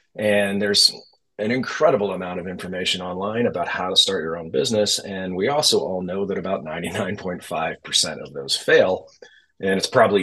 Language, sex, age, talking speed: English, male, 30-49, 170 wpm